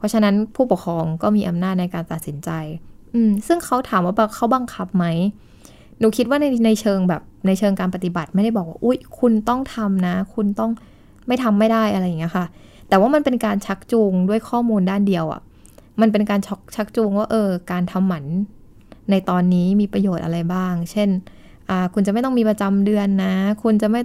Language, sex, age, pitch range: Thai, female, 20-39, 180-220 Hz